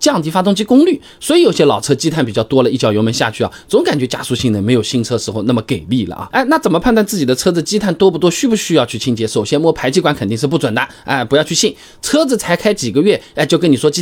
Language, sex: Chinese, male